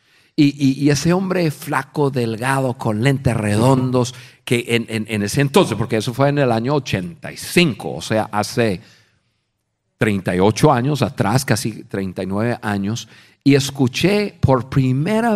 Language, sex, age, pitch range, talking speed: Spanish, male, 50-69, 115-150 Hz, 140 wpm